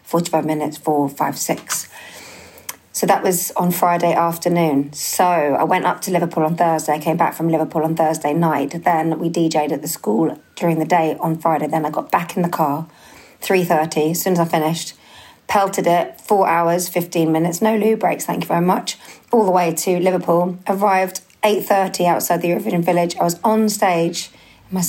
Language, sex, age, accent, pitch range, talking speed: English, female, 40-59, British, 160-190 Hz, 195 wpm